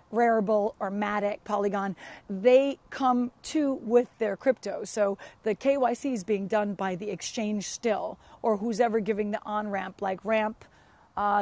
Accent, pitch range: American, 205-235 Hz